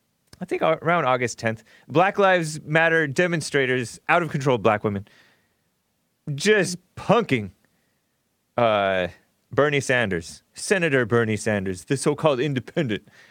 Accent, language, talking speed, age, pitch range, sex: American, English, 105 wpm, 30-49, 120-170 Hz, male